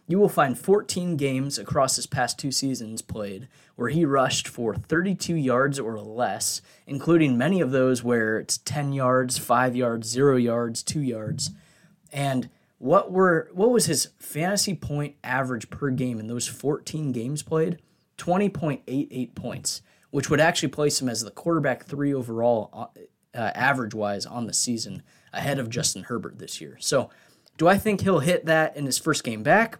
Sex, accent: male, American